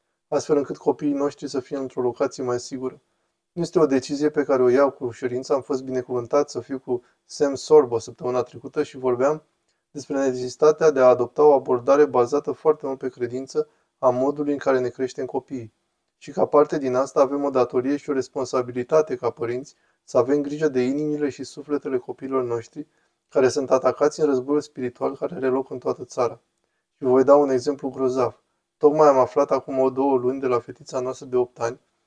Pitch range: 125-150 Hz